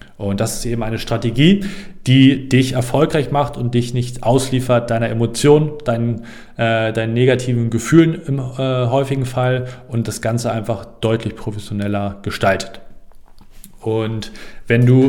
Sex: male